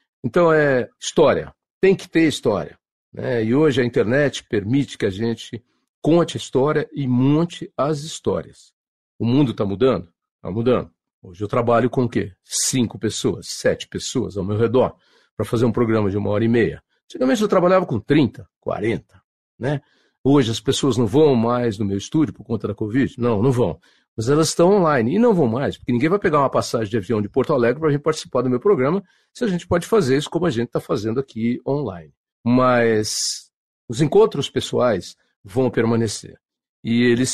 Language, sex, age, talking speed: Portuguese, male, 50-69, 195 wpm